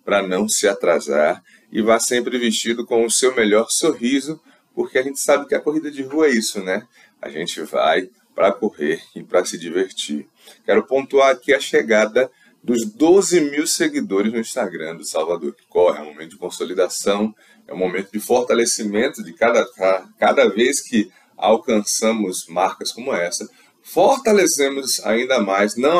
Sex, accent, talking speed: male, Brazilian, 165 wpm